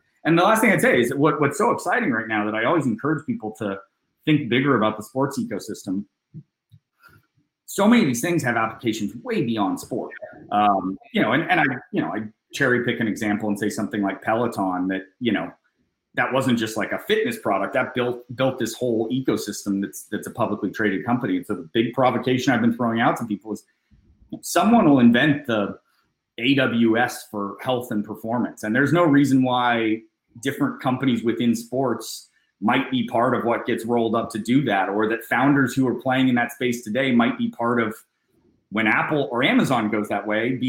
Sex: male